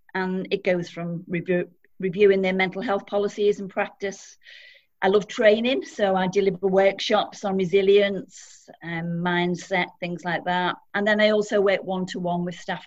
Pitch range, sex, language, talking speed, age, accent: 175-210 Hz, female, English, 155 wpm, 40-59, British